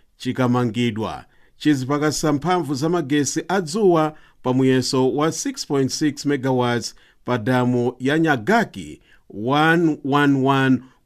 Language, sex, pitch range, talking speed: English, male, 130-170 Hz, 70 wpm